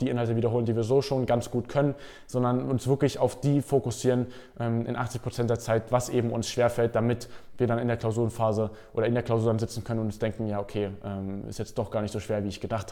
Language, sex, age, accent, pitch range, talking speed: German, male, 20-39, German, 120-140 Hz, 240 wpm